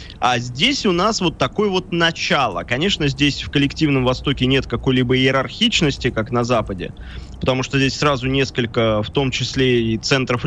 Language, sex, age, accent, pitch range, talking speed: Russian, male, 20-39, native, 120-150 Hz, 165 wpm